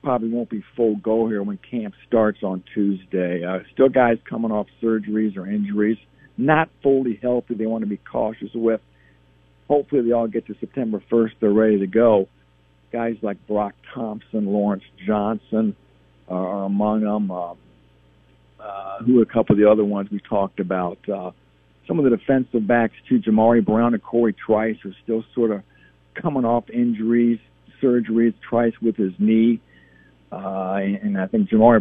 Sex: male